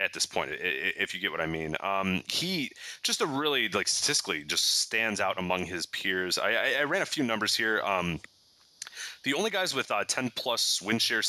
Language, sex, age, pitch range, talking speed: English, male, 30-49, 85-105 Hz, 205 wpm